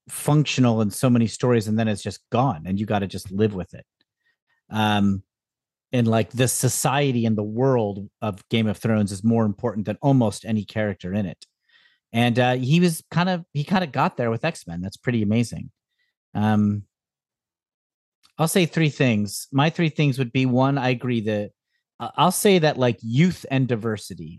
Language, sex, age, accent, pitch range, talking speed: English, male, 40-59, American, 105-145 Hz, 190 wpm